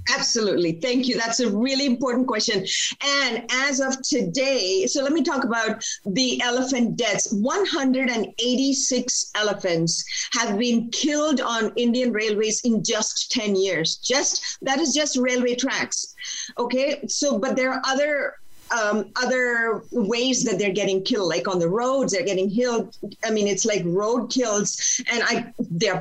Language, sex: English, female